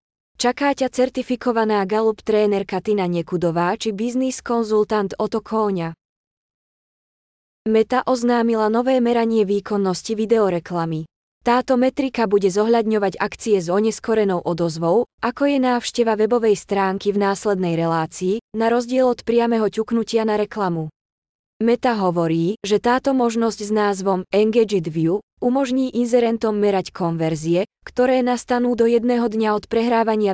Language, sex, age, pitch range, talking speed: Slovak, female, 20-39, 195-235 Hz, 120 wpm